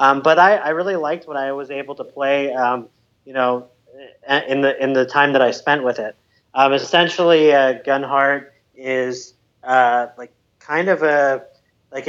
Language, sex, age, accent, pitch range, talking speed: English, male, 30-49, American, 125-145 Hz, 180 wpm